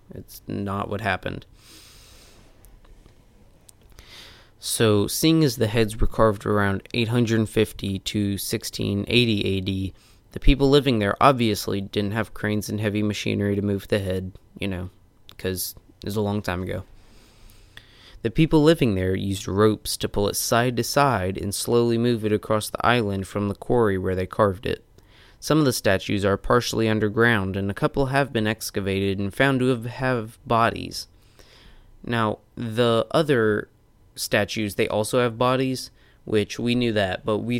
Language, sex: English, male